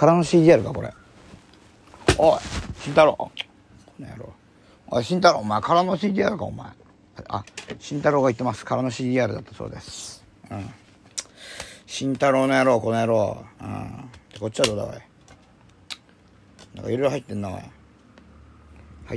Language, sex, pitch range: Japanese, male, 100-130 Hz